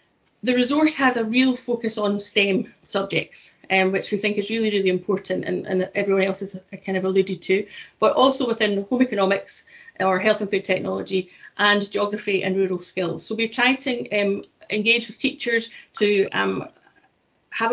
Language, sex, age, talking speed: English, female, 30-49, 175 wpm